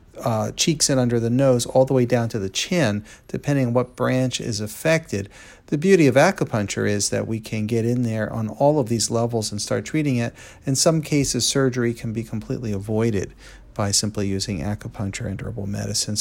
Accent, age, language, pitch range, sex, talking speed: American, 40-59, English, 110-130 Hz, male, 200 wpm